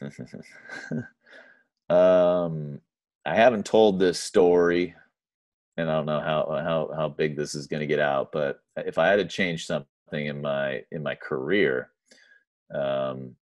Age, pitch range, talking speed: 40-59, 75-85 Hz, 145 wpm